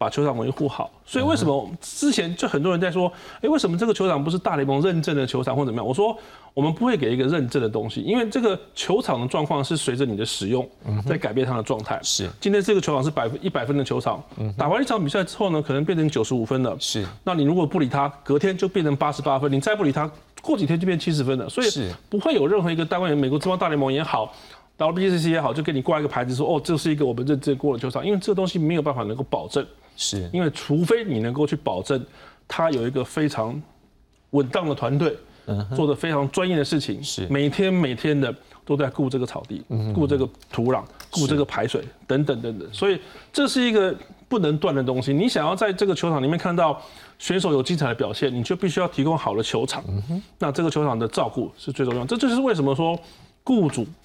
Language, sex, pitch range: Chinese, male, 135-175 Hz